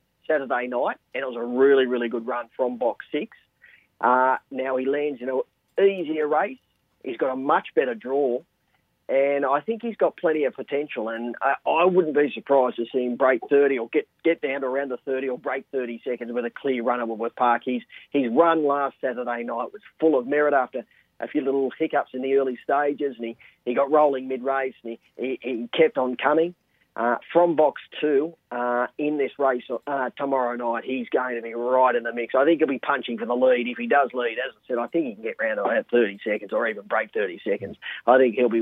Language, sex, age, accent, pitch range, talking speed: English, male, 40-59, Australian, 120-150 Hz, 230 wpm